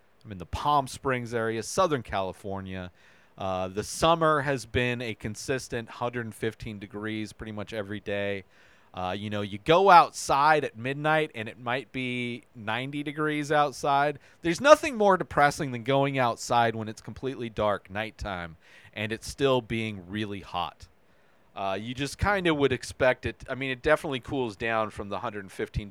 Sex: male